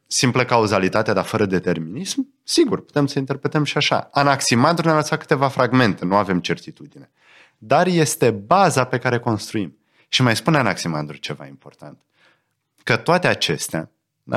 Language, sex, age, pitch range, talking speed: Romanian, male, 30-49, 95-140 Hz, 140 wpm